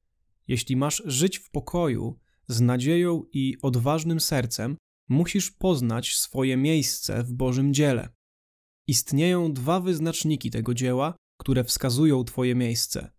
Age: 20-39